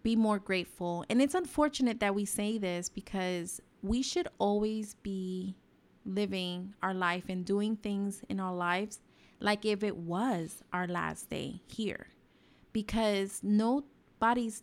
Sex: female